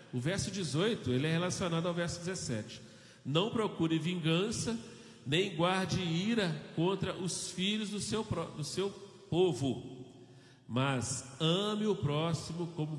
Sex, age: male, 40-59